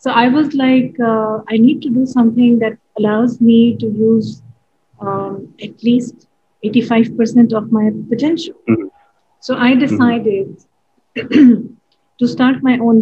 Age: 30-49